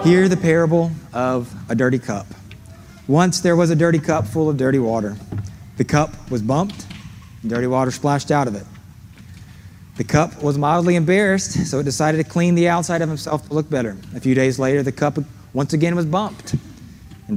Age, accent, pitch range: 30-49, American, 110-155 Hz